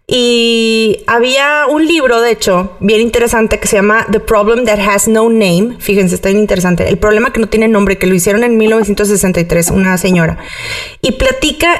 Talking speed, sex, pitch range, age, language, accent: 185 wpm, female, 190-240 Hz, 30-49, Spanish, Mexican